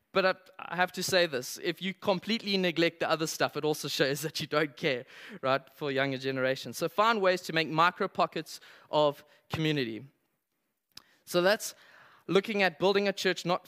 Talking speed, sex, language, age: 180 wpm, male, English, 20-39